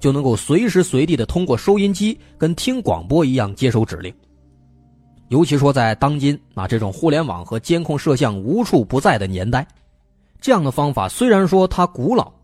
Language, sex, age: Chinese, male, 20-39